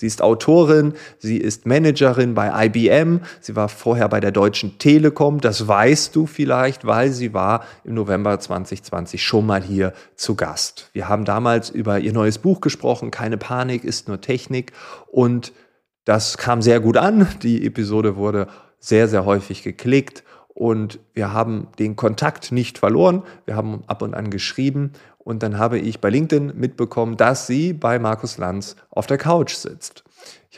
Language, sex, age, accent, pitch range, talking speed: German, male, 30-49, German, 110-135 Hz, 170 wpm